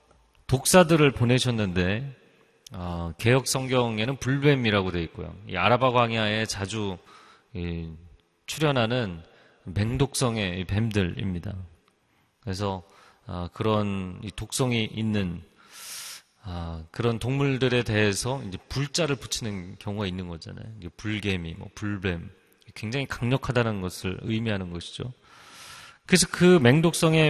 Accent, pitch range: native, 100-130 Hz